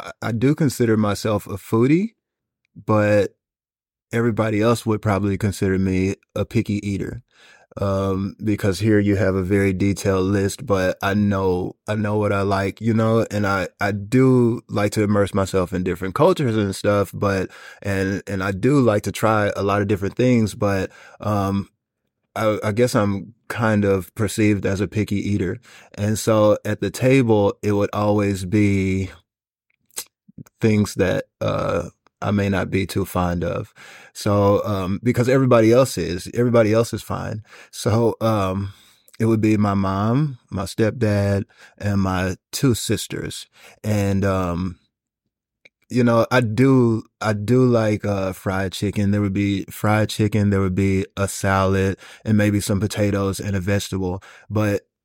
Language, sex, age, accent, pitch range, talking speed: English, male, 20-39, American, 95-110 Hz, 160 wpm